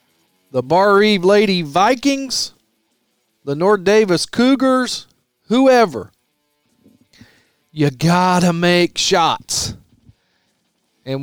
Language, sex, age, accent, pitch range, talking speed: English, male, 40-59, American, 140-185 Hz, 80 wpm